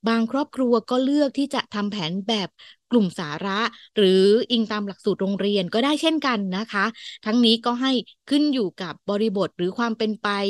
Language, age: Thai, 20-39